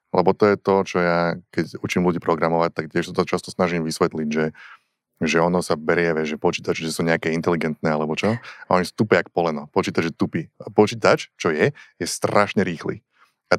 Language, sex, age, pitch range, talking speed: Slovak, male, 20-39, 85-105 Hz, 205 wpm